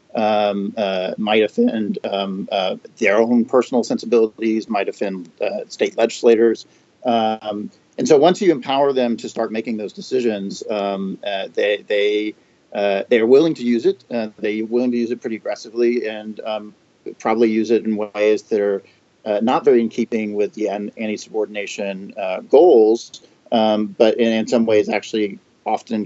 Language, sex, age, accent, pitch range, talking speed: English, male, 40-59, American, 105-130 Hz, 170 wpm